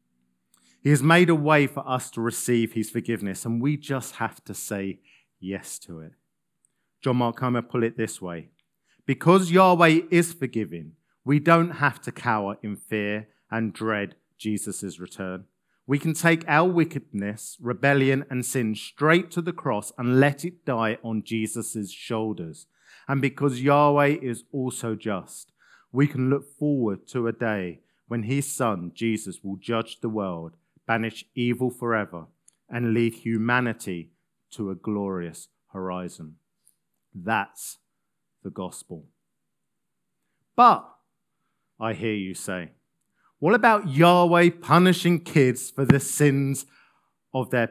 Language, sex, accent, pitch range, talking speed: English, male, British, 110-145 Hz, 135 wpm